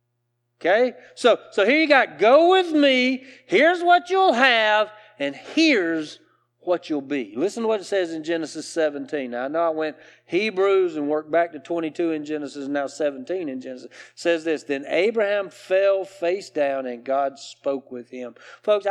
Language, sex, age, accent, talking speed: English, male, 40-59, American, 185 wpm